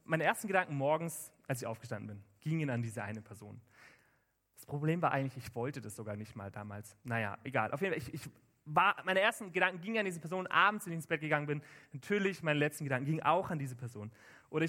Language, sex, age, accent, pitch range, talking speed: German, male, 30-49, German, 125-175 Hz, 230 wpm